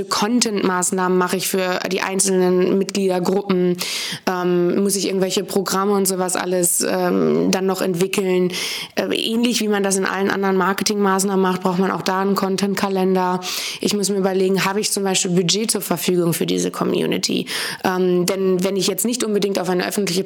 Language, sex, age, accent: German, female, 20-39, German